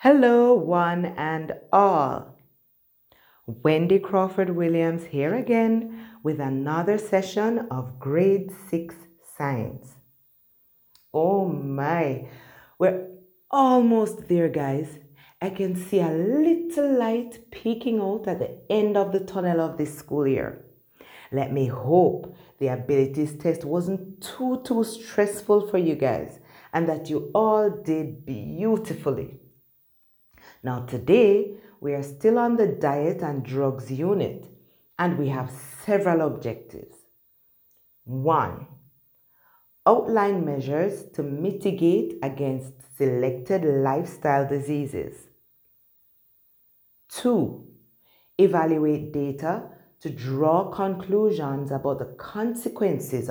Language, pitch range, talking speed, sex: English, 140-200 Hz, 105 wpm, female